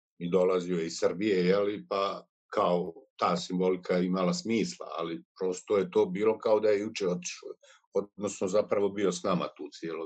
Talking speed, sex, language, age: 175 wpm, male, Croatian, 50-69